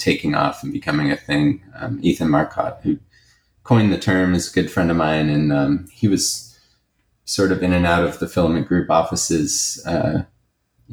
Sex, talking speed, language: male, 185 wpm, English